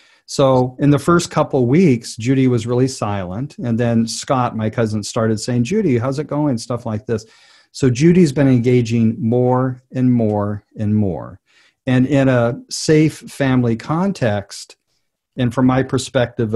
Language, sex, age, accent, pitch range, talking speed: English, male, 50-69, American, 110-130 Hz, 160 wpm